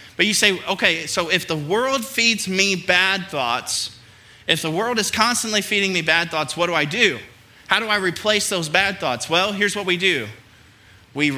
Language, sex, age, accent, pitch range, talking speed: English, male, 20-39, American, 155-210 Hz, 200 wpm